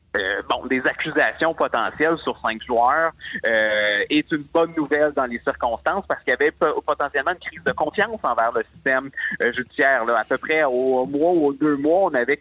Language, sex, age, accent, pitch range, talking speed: French, male, 30-49, Canadian, 125-170 Hz, 200 wpm